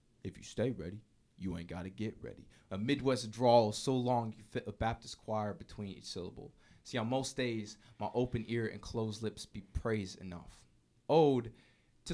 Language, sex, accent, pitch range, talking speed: English, male, American, 115-175 Hz, 190 wpm